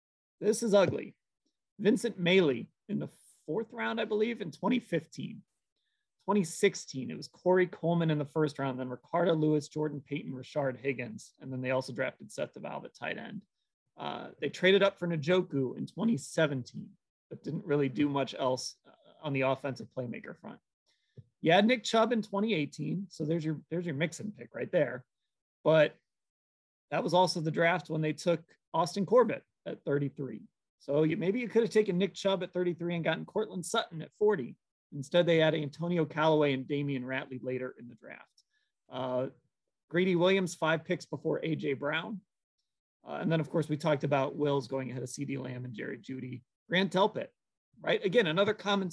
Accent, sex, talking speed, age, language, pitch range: American, male, 180 wpm, 30-49, English, 135-185 Hz